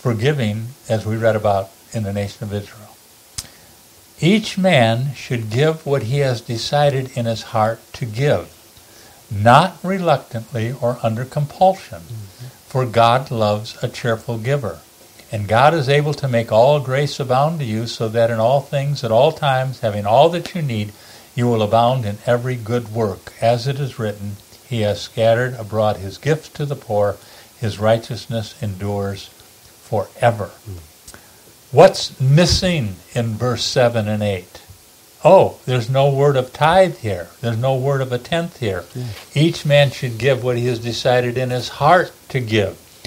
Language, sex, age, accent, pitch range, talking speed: English, male, 50-69, American, 110-130 Hz, 160 wpm